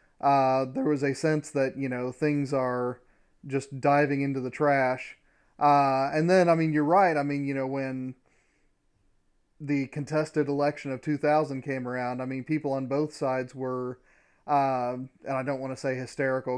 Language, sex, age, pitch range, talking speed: English, male, 30-49, 130-150 Hz, 175 wpm